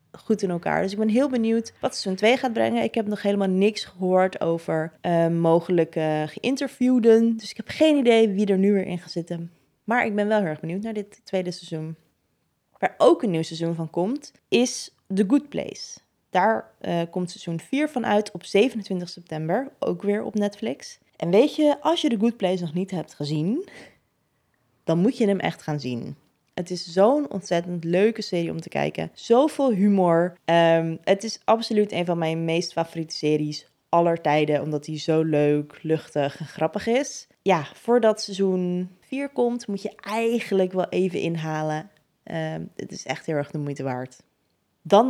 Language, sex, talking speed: Dutch, female, 185 wpm